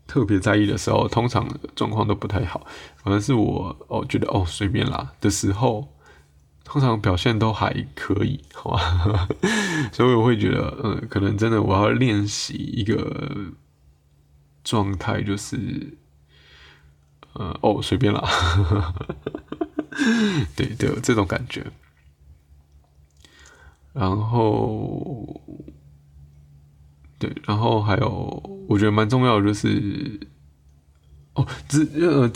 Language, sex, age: Chinese, male, 20-39